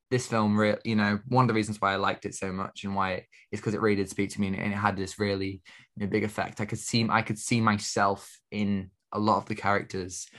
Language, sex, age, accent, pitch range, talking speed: English, male, 20-39, British, 100-115 Hz, 270 wpm